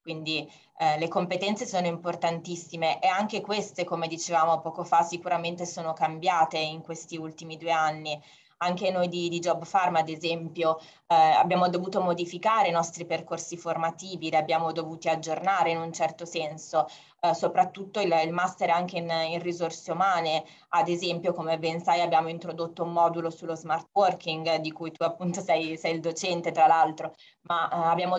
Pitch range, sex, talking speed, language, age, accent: 160-180 Hz, female, 170 wpm, Italian, 20-39, native